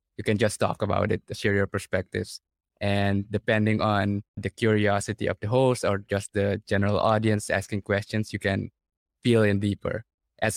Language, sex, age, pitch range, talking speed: English, male, 20-39, 100-115 Hz, 170 wpm